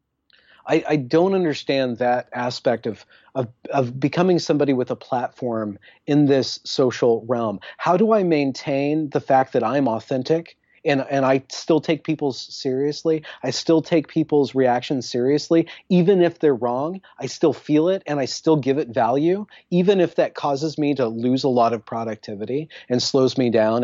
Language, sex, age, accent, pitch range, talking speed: English, male, 30-49, American, 120-155 Hz, 175 wpm